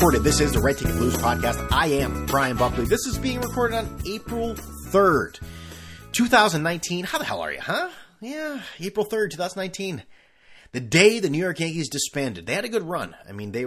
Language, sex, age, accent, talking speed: English, male, 30-49, American, 195 wpm